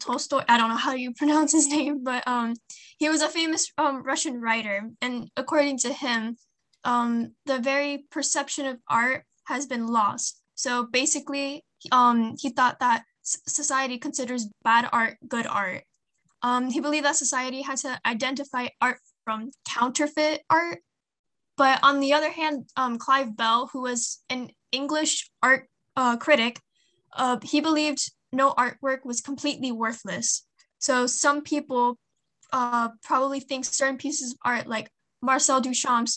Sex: female